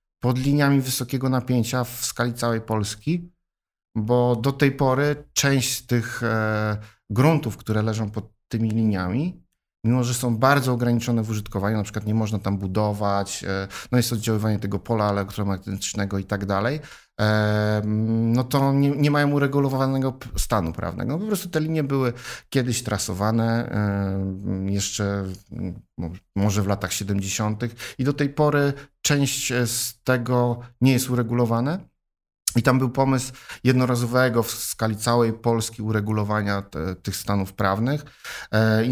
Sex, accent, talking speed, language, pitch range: male, native, 135 wpm, Polish, 105-125 Hz